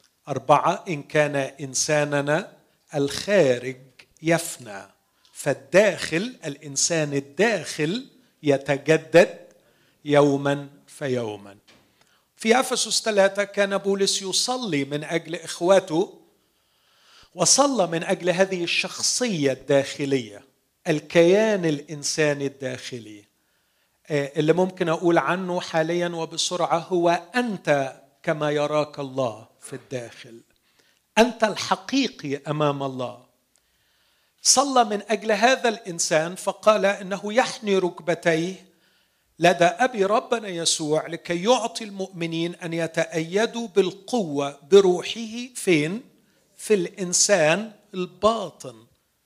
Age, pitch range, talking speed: 50-69, 145-195 Hz, 85 wpm